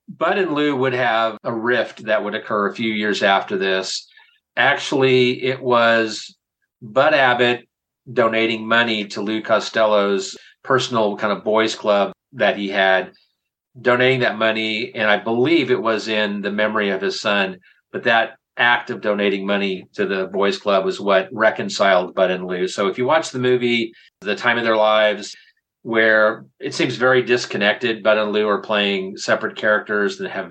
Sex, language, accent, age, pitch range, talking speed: male, English, American, 40-59, 100-125 Hz, 175 wpm